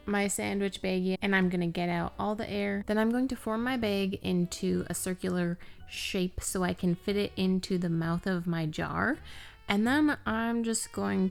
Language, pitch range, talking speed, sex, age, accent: English, 175-220 Hz, 200 wpm, female, 20-39, American